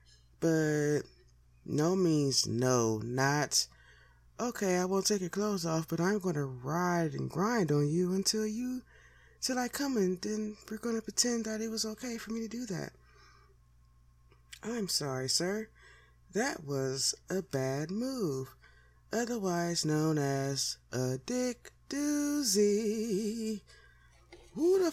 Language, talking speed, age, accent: English, 135 wpm, 20-39, American